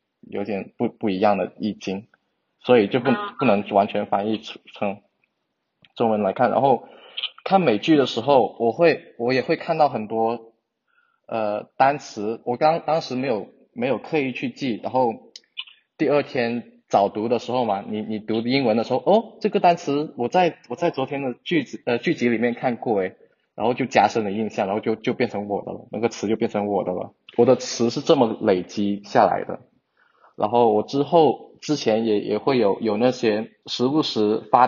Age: 20-39